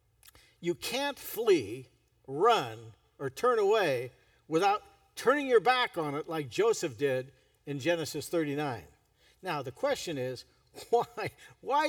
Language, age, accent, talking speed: English, 60-79, American, 125 wpm